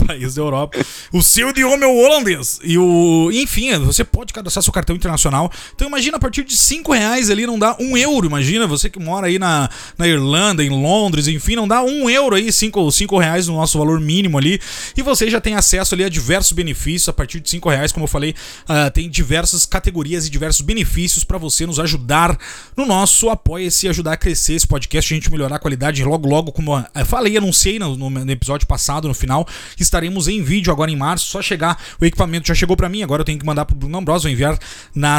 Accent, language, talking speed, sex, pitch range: Brazilian, Portuguese, 230 wpm, male, 145-190 Hz